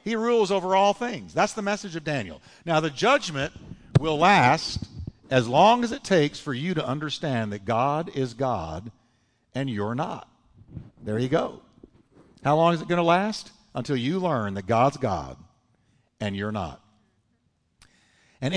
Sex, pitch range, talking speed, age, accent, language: male, 125-190 Hz, 165 wpm, 50-69, American, English